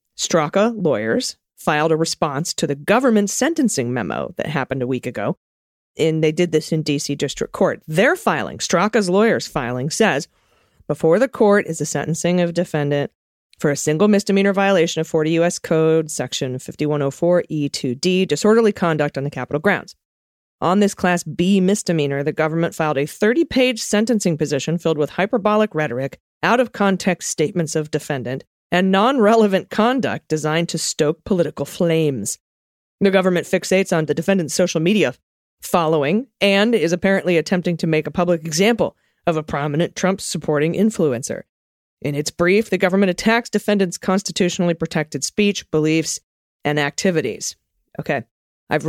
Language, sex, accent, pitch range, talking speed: English, female, American, 150-195 Hz, 145 wpm